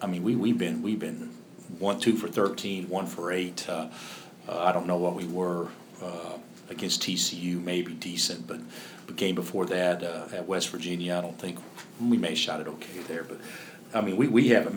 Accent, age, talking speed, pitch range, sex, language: American, 50-69, 210 wpm, 95-115 Hz, male, English